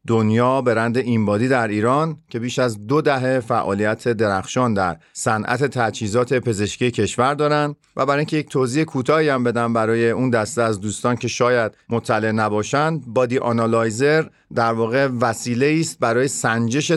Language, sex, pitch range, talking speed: Persian, male, 110-130 Hz, 155 wpm